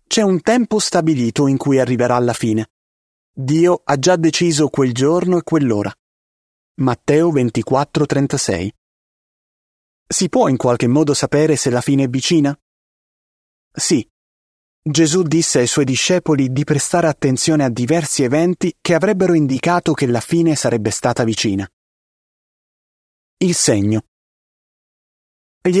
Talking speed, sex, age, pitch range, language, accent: 125 wpm, male, 30-49, 120-165 Hz, Italian, native